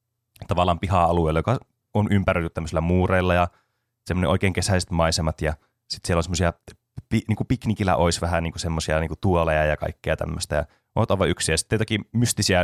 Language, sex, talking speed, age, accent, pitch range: Finnish, male, 170 wpm, 20-39, native, 85-115 Hz